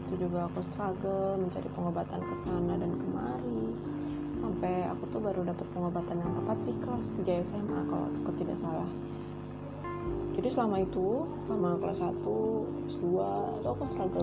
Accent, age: native, 20-39